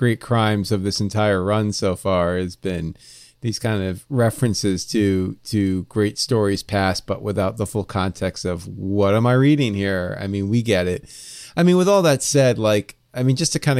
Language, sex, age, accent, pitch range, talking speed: English, male, 30-49, American, 100-125 Hz, 205 wpm